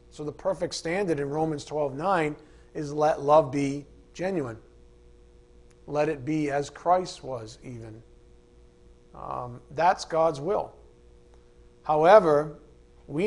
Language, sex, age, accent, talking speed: English, male, 40-59, American, 120 wpm